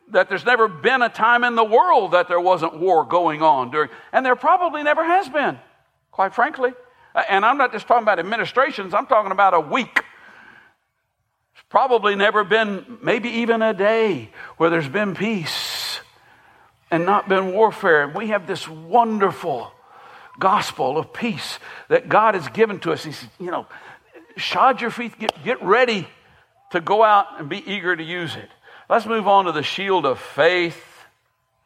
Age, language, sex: 60-79, English, male